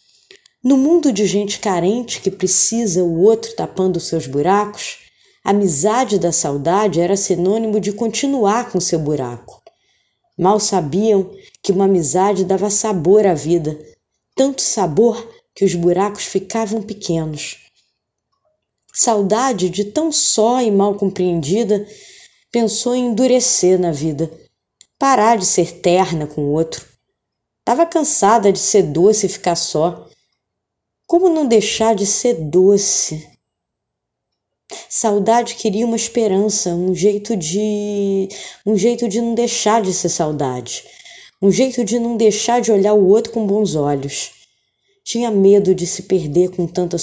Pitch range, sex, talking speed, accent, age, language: 180-235 Hz, female, 135 wpm, Brazilian, 20-39, Portuguese